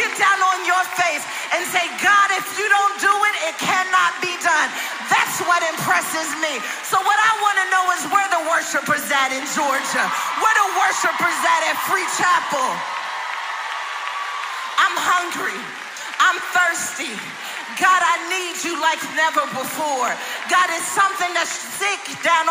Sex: female